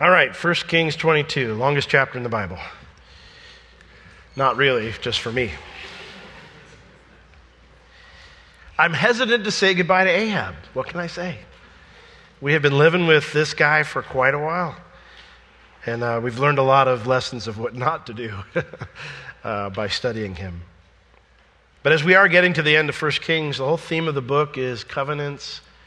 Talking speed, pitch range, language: 170 wpm, 120-155 Hz, English